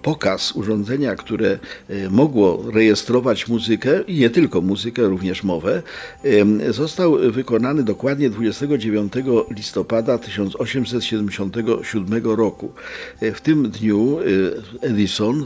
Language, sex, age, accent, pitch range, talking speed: Polish, male, 50-69, native, 100-120 Hz, 90 wpm